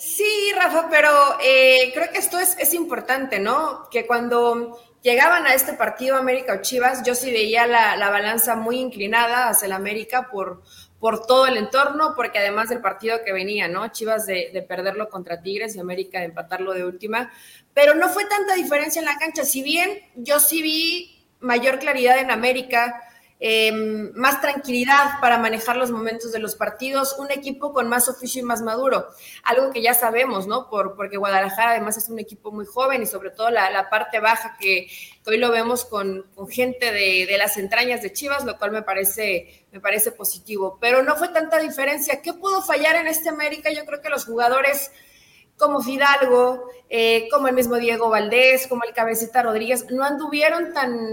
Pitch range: 220-280 Hz